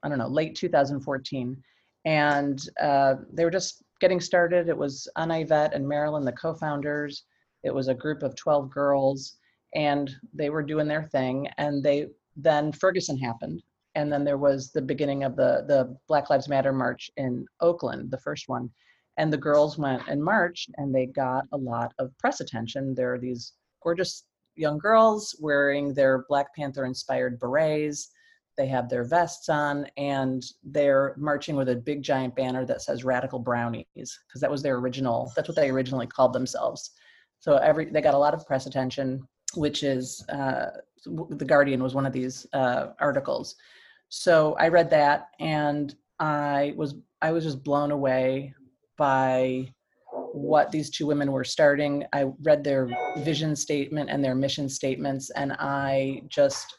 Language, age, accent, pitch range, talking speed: English, 40-59, American, 130-150 Hz, 170 wpm